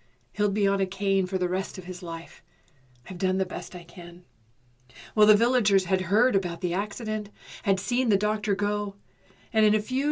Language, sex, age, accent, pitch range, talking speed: English, female, 40-59, American, 175-230 Hz, 200 wpm